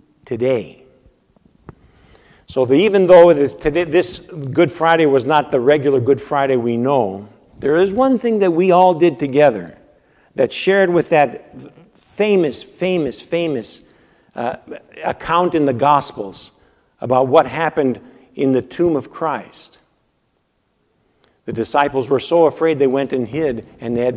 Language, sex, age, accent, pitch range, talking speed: English, male, 50-69, American, 135-175 Hz, 135 wpm